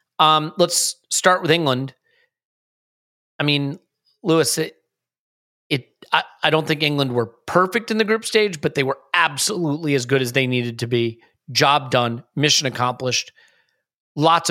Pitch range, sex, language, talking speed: 135-165 Hz, male, English, 155 wpm